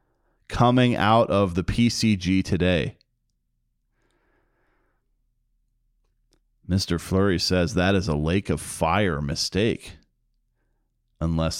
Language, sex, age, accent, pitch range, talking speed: English, male, 40-59, American, 90-115 Hz, 90 wpm